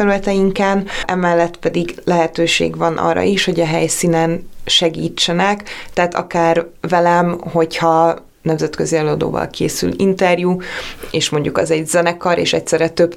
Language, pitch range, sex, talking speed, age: Hungarian, 160-180 Hz, female, 120 wpm, 20-39